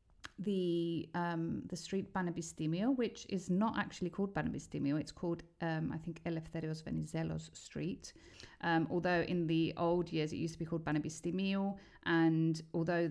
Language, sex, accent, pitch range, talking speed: Greek, female, British, 155-180 Hz, 150 wpm